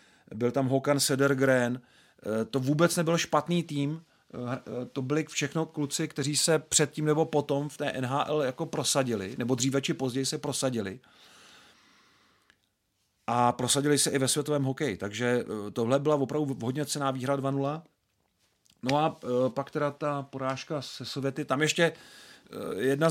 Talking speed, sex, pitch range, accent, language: 145 wpm, male, 125-145 Hz, native, Czech